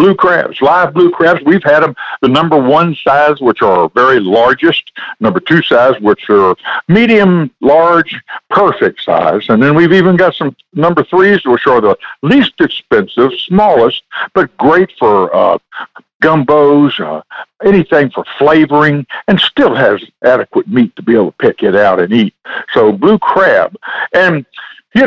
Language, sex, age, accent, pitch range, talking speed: English, male, 60-79, American, 140-200 Hz, 160 wpm